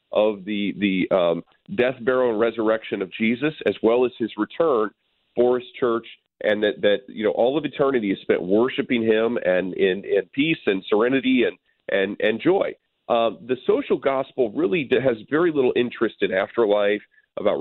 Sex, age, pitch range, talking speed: male, 40-59, 105-150 Hz, 175 wpm